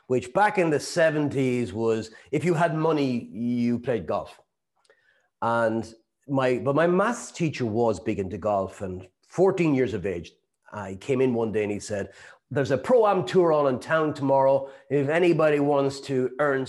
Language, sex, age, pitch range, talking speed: English, male, 40-59, 120-170 Hz, 180 wpm